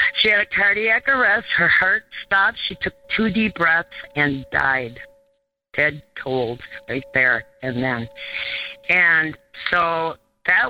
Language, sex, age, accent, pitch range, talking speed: English, female, 50-69, American, 145-195 Hz, 135 wpm